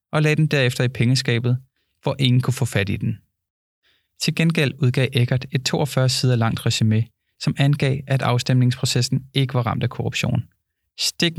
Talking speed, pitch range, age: 165 wpm, 110-135 Hz, 20-39